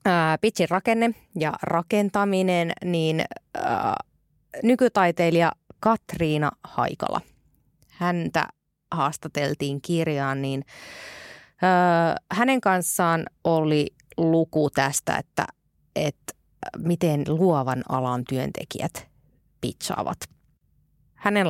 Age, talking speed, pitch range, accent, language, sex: 20-39, 80 wpm, 150-200 Hz, native, Finnish, female